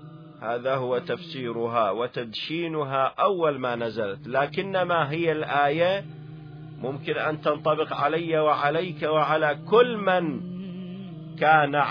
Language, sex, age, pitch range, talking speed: Arabic, male, 40-59, 135-170 Hz, 100 wpm